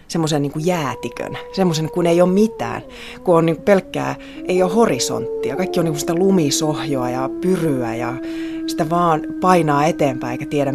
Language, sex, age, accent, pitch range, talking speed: Finnish, female, 30-49, native, 135-185 Hz, 175 wpm